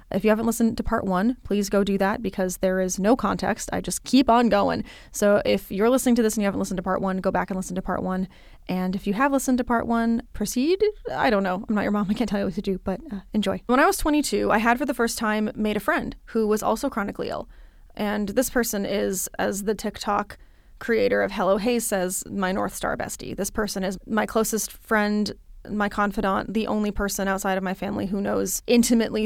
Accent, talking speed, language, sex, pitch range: American, 245 wpm, English, female, 195-225 Hz